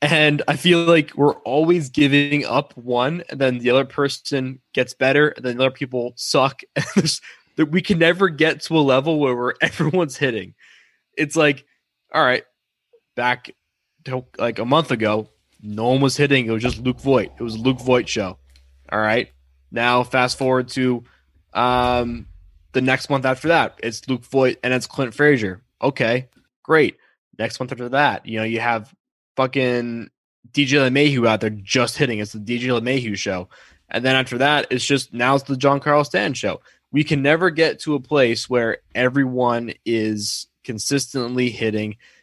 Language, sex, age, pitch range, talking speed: English, male, 20-39, 110-140 Hz, 180 wpm